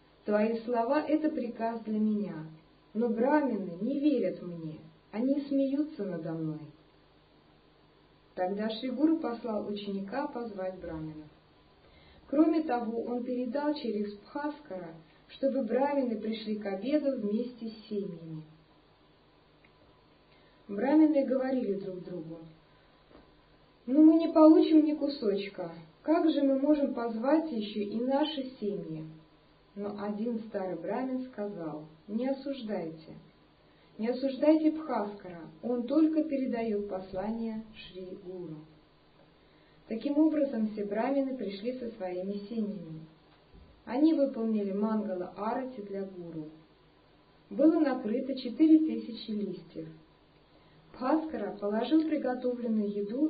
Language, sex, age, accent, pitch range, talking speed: Russian, female, 50-69, native, 185-270 Hz, 105 wpm